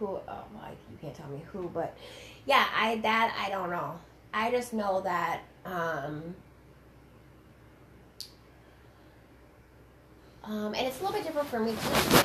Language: English